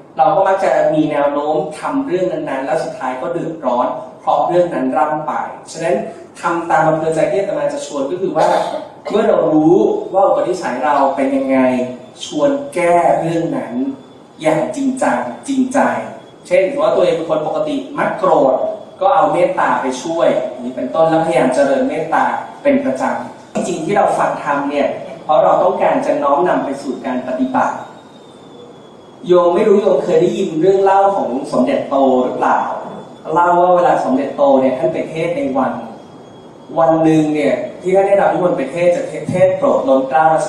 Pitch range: 155-250 Hz